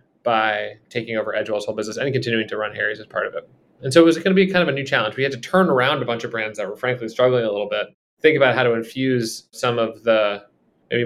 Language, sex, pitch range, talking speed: English, male, 115-150 Hz, 280 wpm